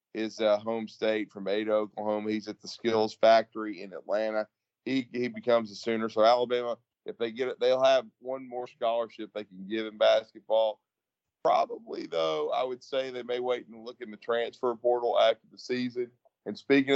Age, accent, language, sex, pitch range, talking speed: 40-59, American, English, male, 110-120 Hz, 190 wpm